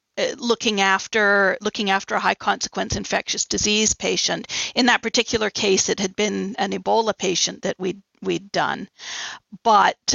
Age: 50-69